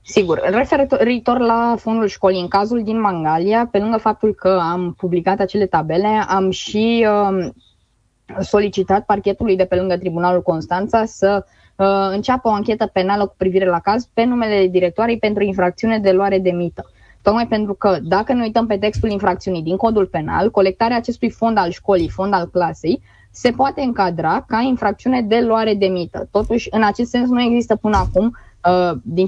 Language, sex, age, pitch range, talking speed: Romanian, female, 20-39, 185-230 Hz, 170 wpm